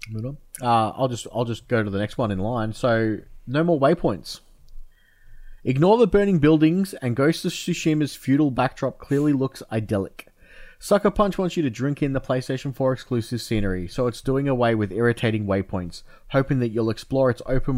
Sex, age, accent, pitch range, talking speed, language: male, 20-39, Australian, 110-135 Hz, 180 wpm, English